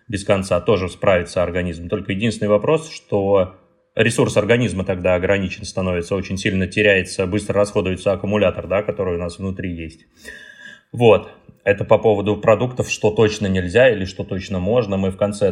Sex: male